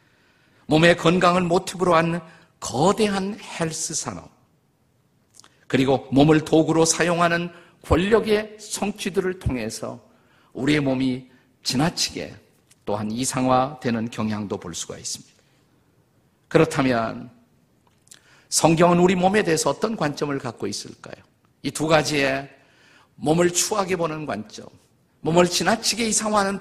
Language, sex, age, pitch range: Korean, male, 50-69, 130-175 Hz